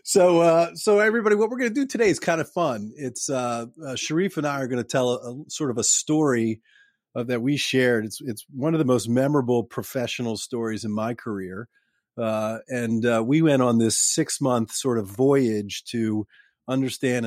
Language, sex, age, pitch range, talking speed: English, male, 40-59, 115-130 Hz, 200 wpm